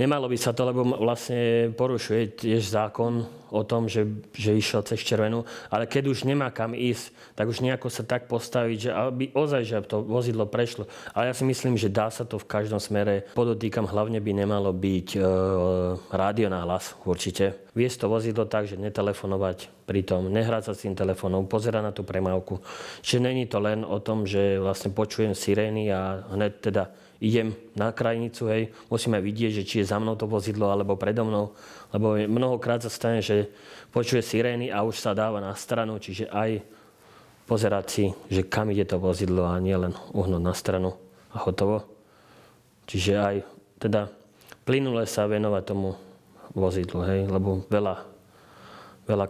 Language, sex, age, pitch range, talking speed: Slovak, male, 30-49, 95-115 Hz, 175 wpm